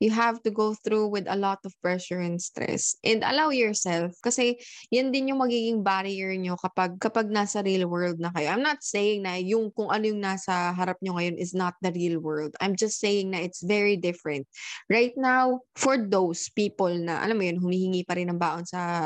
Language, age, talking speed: Filipino, 20-39, 215 wpm